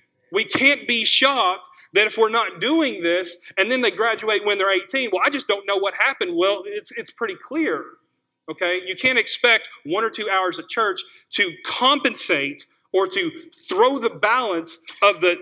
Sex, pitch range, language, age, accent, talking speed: male, 175-270 Hz, English, 40-59, American, 185 wpm